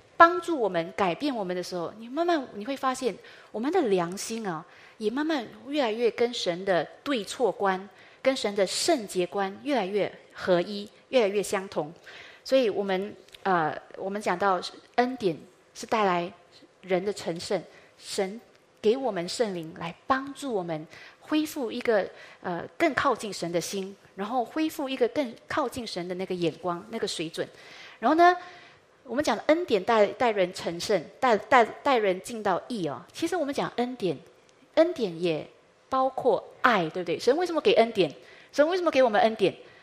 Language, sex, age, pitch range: Chinese, female, 30-49, 190-270 Hz